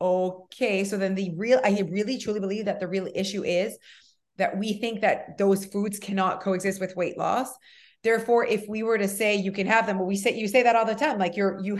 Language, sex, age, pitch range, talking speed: English, female, 30-49, 190-240 Hz, 240 wpm